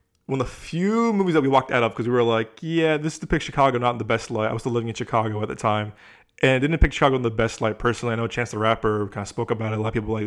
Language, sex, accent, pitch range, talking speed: English, male, American, 110-135 Hz, 335 wpm